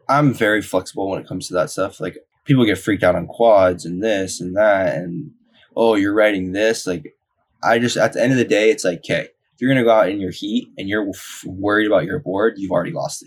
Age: 10-29